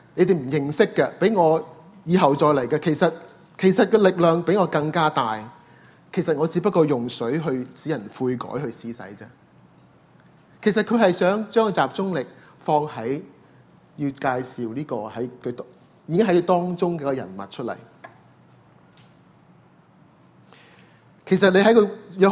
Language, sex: Chinese, male